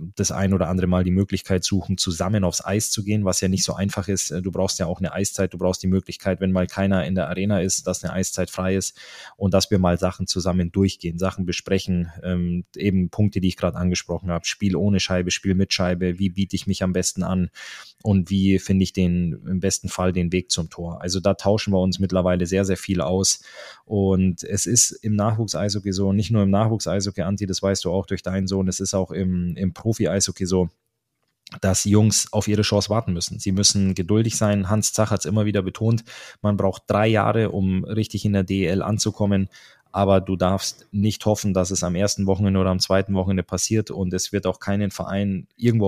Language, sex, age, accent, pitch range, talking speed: German, male, 20-39, German, 95-100 Hz, 220 wpm